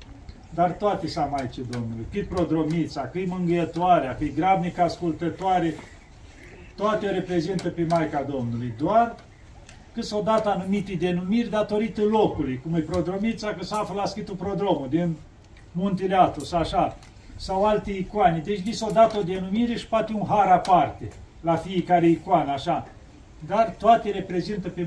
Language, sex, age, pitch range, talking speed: Romanian, male, 40-59, 150-195 Hz, 145 wpm